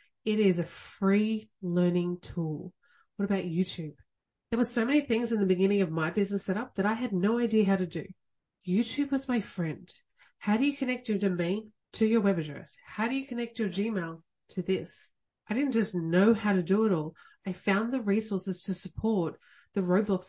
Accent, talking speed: Australian, 200 wpm